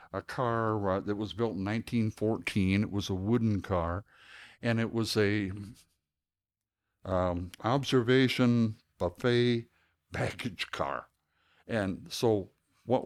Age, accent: 60-79, American